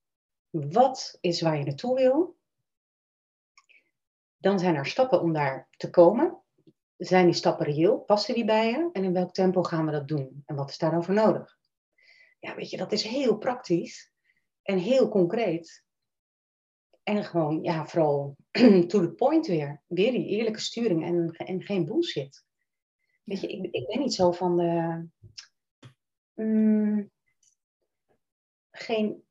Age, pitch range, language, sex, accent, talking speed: 40-59, 165-210 Hz, Dutch, female, Dutch, 145 wpm